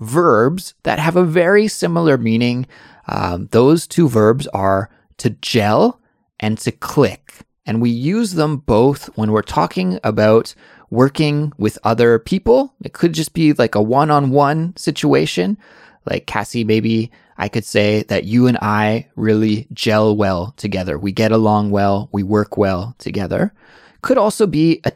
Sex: male